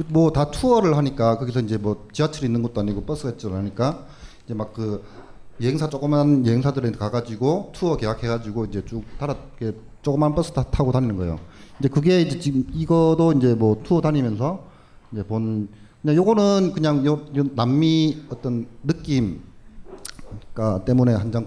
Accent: native